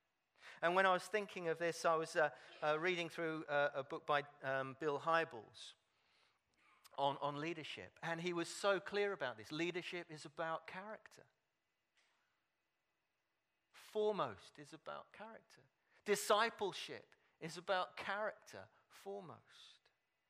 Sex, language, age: male, English, 40-59